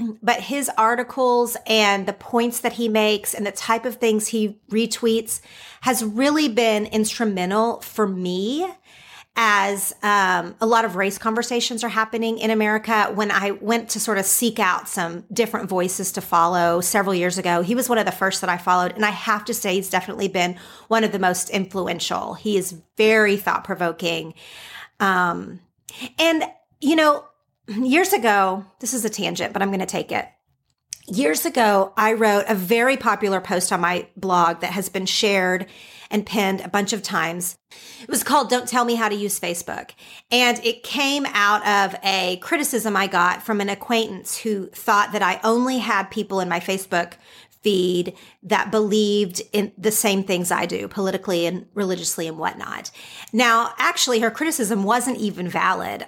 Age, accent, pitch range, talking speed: 30-49, American, 190-230 Hz, 180 wpm